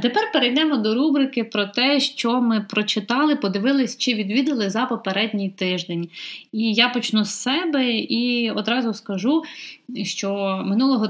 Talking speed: 135 wpm